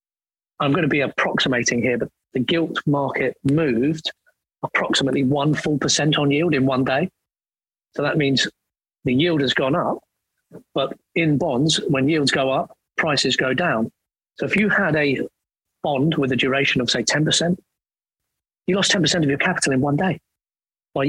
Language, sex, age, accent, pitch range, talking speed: English, male, 40-59, British, 130-155 Hz, 170 wpm